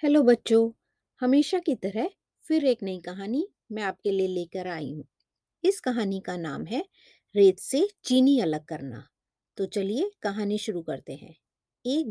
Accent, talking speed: native, 160 wpm